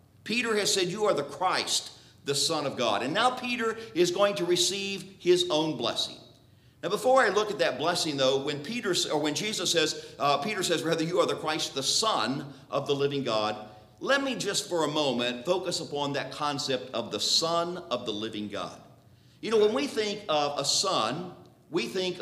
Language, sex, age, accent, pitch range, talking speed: English, male, 50-69, American, 145-200 Hz, 195 wpm